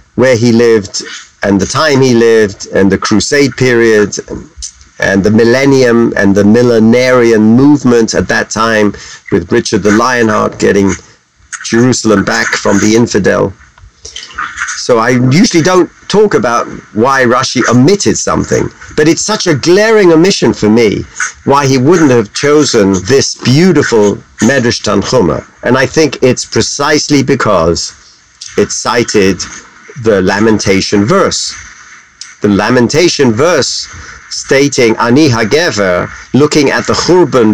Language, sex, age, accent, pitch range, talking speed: English, male, 50-69, British, 110-165 Hz, 130 wpm